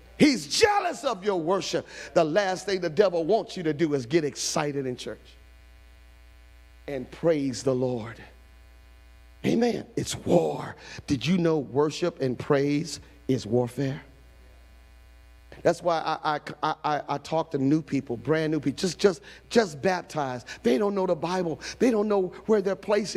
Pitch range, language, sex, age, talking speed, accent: 140-225 Hz, English, male, 40-59, 160 wpm, American